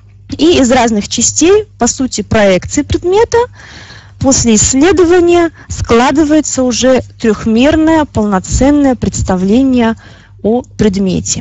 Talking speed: 90 wpm